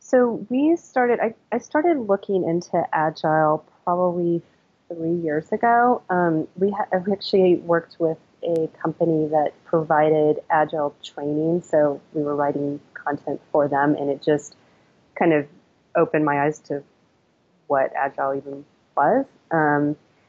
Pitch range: 150-175 Hz